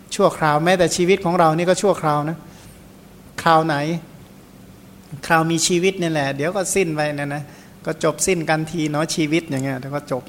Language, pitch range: Thai, 155-185 Hz